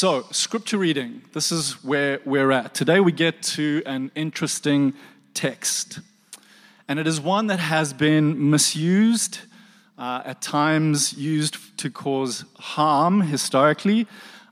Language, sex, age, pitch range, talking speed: English, male, 30-49, 140-195 Hz, 130 wpm